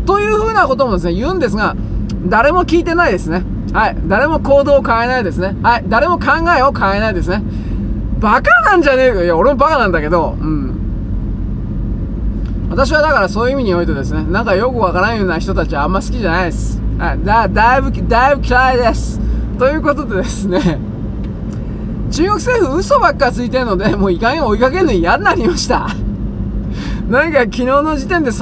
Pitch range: 200-290 Hz